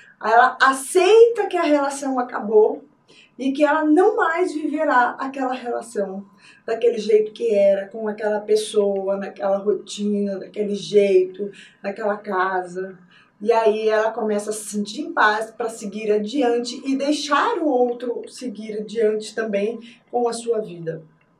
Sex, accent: female, Brazilian